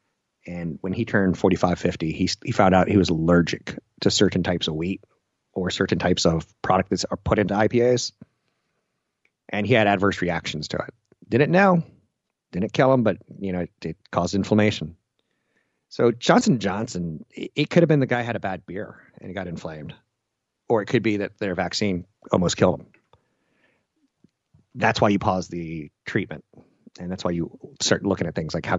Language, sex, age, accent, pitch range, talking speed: English, male, 30-49, American, 90-110 Hz, 190 wpm